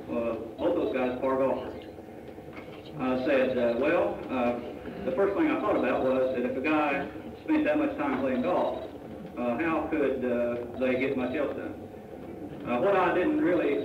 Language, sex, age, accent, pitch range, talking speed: English, male, 50-69, American, 120-150 Hz, 185 wpm